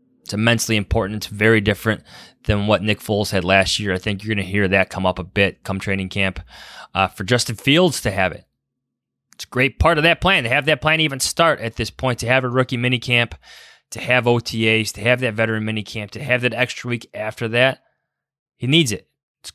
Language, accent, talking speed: English, American, 235 wpm